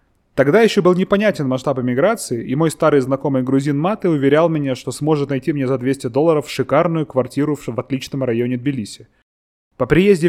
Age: 20-39